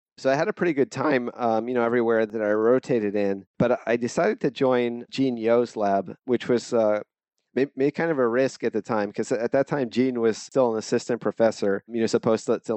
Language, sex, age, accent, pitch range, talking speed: English, male, 30-49, American, 105-120 Hz, 245 wpm